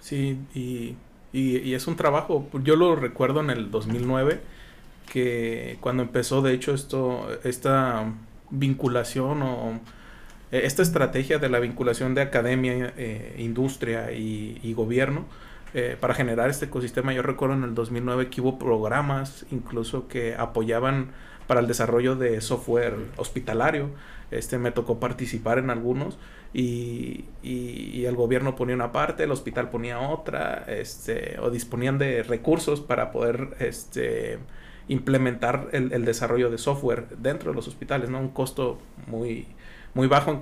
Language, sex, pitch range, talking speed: English, male, 120-135 Hz, 145 wpm